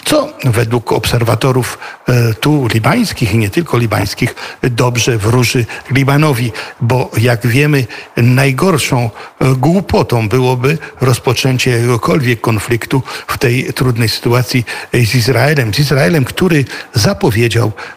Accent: native